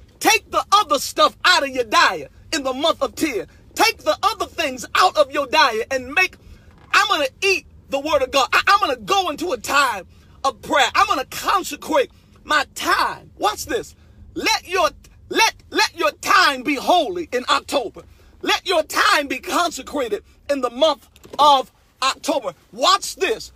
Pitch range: 285-385 Hz